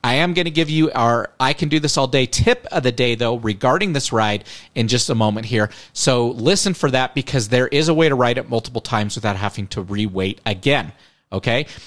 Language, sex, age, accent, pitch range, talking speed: English, male, 30-49, American, 115-155 Hz, 205 wpm